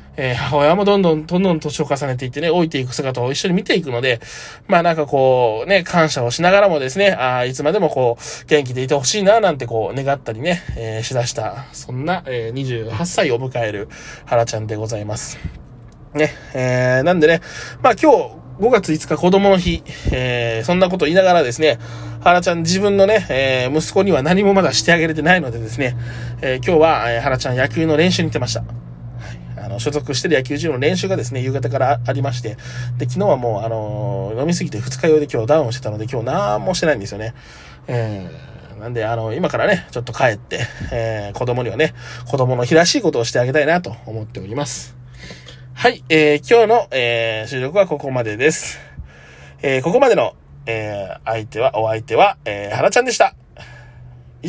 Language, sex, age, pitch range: Japanese, male, 20-39, 120-155 Hz